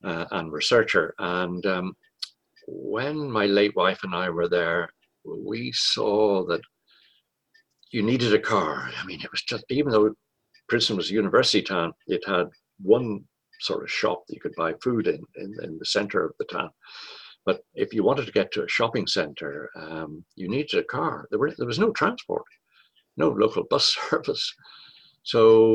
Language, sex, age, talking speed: English, male, 60-79, 180 wpm